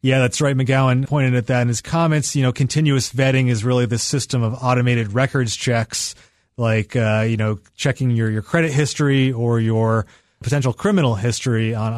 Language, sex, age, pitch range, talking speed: English, male, 30-49, 115-140 Hz, 185 wpm